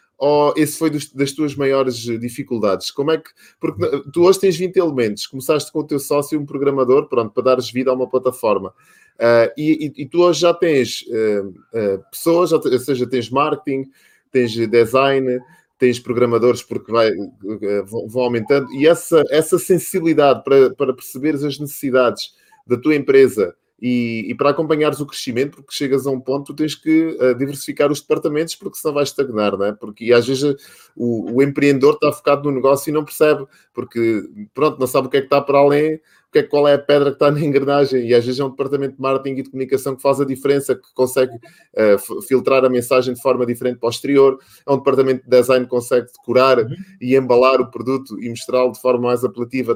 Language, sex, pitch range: Portuguese, male, 125-150 Hz